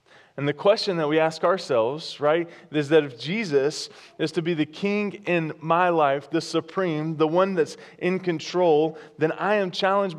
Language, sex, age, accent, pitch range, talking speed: English, male, 20-39, American, 130-165 Hz, 185 wpm